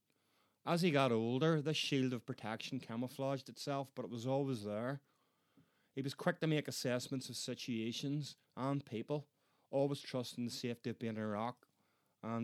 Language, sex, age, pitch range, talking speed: English, male, 30-49, 115-135 Hz, 170 wpm